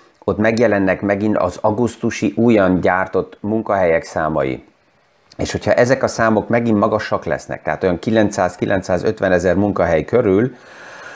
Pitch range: 95-110 Hz